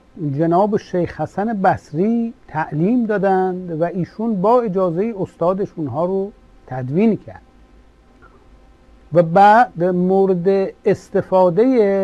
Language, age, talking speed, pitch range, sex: Persian, 60-79, 95 wpm, 165-210 Hz, male